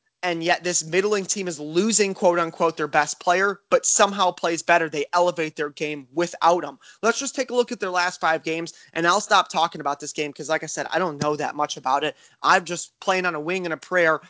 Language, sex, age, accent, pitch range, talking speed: English, male, 20-39, American, 160-205 Hz, 250 wpm